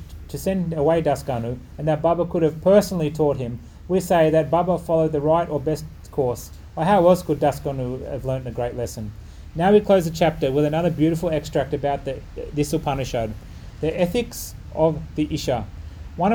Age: 30-49